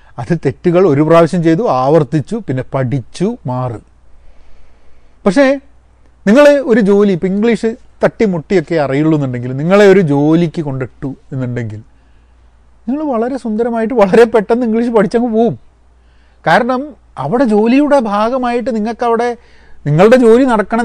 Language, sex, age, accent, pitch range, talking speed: Malayalam, male, 30-49, native, 125-205 Hz, 110 wpm